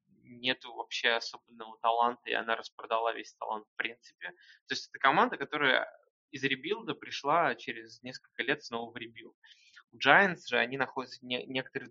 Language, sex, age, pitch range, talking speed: Russian, male, 20-39, 120-140 Hz, 165 wpm